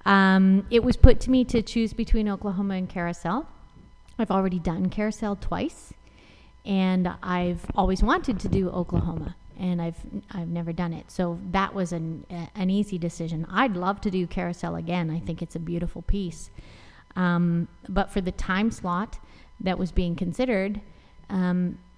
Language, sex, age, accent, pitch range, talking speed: English, female, 30-49, American, 175-205 Hz, 165 wpm